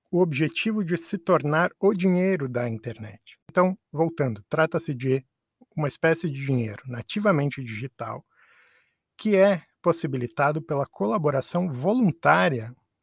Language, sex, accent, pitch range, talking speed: Portuguese, male, Brazilian, 120-165 Hz, 115 wpm